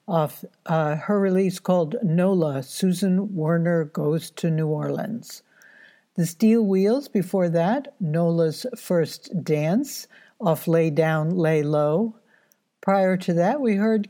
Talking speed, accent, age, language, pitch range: 130 wpm, American, 60-79, English, 160-200 Hz